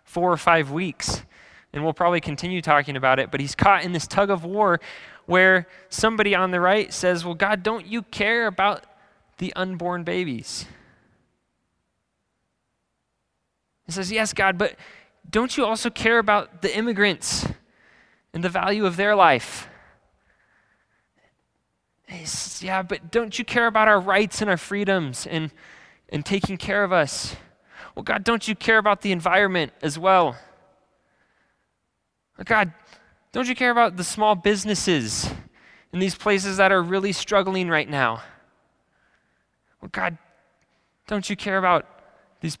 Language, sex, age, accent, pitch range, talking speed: English, male, 20-39, American, 160-205 Hz, 150 wpm